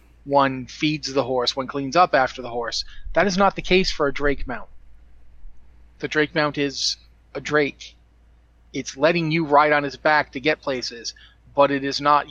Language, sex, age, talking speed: English, male, 30-49, 190 wpm